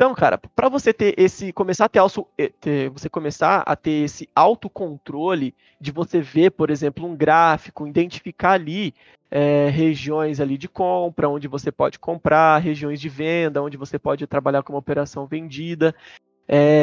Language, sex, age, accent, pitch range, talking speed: Portuguese, male, 20-39, Brazilian, 145-175 Hz, 170 wpm